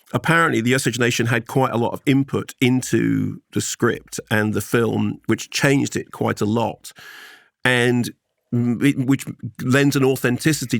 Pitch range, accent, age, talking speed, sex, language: 120-145 Hz, British, 40-59, 150 wpm, male, English